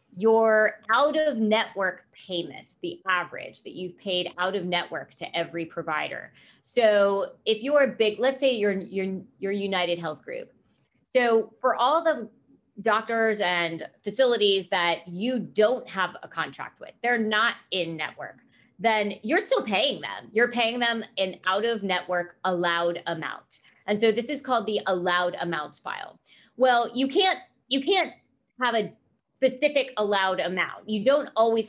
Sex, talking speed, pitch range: female, 155 wpm, 180-245 Hz